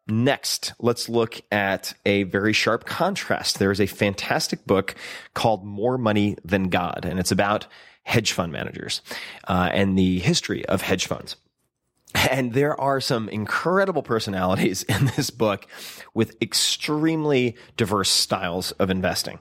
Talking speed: 140 wpm